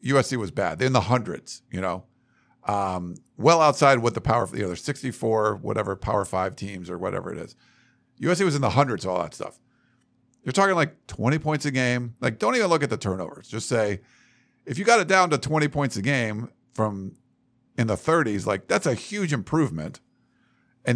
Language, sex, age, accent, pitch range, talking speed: English, male, 50-69, American, 120-150 Hz, 205 wpm